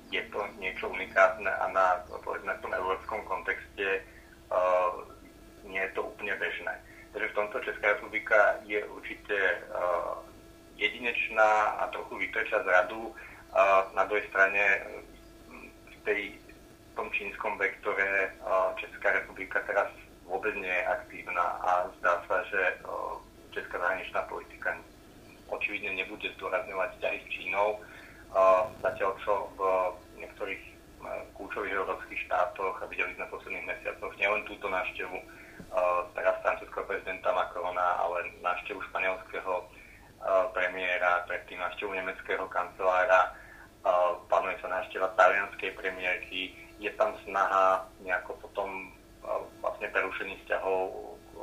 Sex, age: male, 30-49